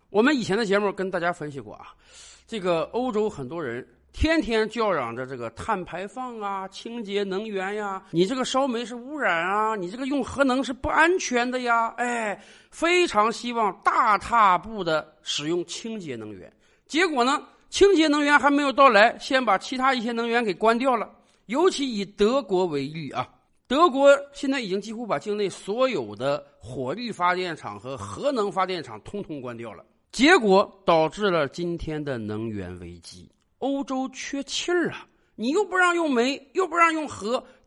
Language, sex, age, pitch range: Chinese, male, 50-69, 185-270 Hz